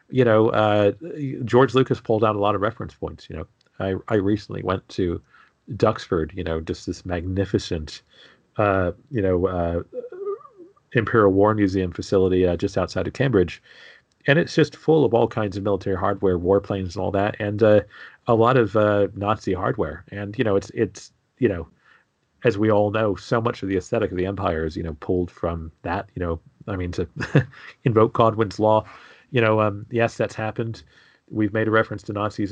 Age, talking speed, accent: 40-59, 195 wpm, American